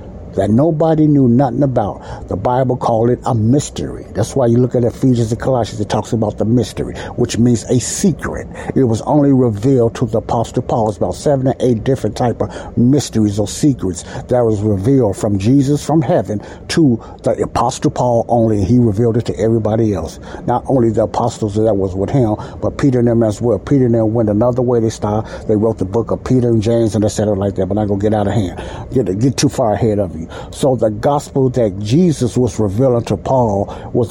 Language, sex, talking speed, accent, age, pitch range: English, male, 220 wpm, American, 60-79, 105-135 Hz